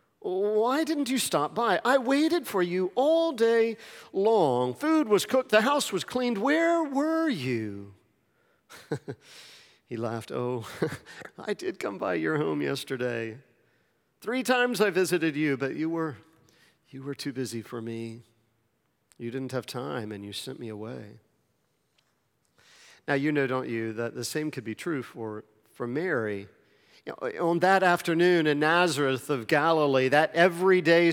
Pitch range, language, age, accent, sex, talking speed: 135-220 Hz, English, 50-69, American, male, 150 wpm